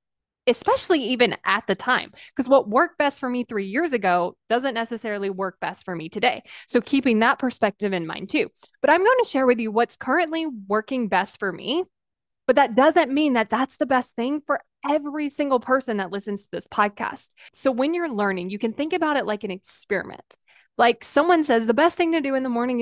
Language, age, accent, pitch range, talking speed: English, 20-39, American, 220-300 Hz, 215 wpm